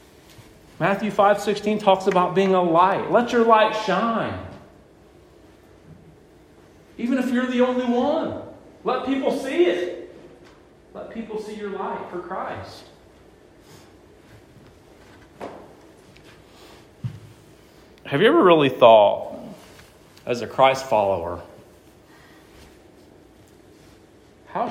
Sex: male